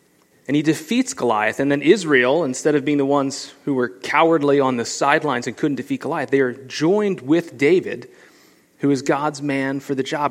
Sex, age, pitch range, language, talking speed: male, 30-49, 135-165 Hz, English, 200 wpm